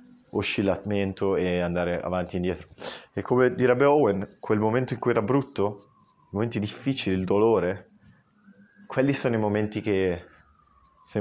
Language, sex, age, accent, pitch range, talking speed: Italian, male, 20-39, native, 95-115 Hz, 145 wpm